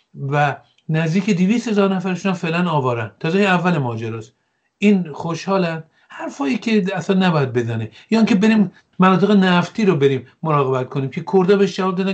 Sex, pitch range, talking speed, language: male, 130-185 Hz, 155 wpm, English